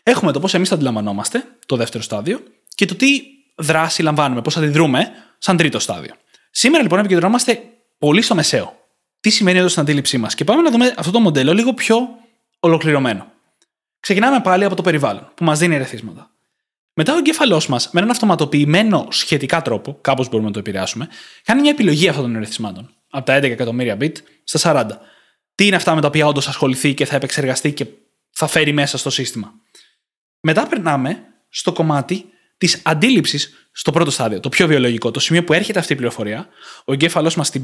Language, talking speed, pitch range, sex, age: Greek, 185 wpm, 140-200 Hz, male, 20-39